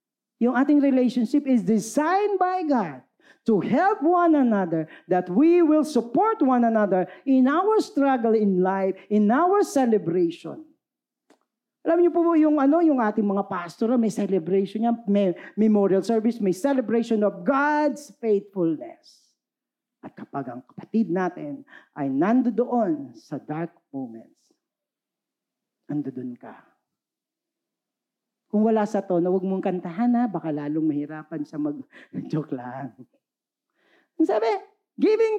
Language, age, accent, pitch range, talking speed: Filipino, 40-59, native, 185-295 Hz, 125 wpm